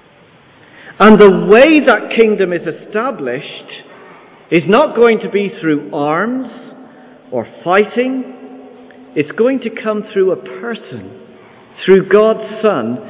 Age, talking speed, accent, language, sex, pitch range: 50-69, 120 wpm, British, English, male, 150-210 Hz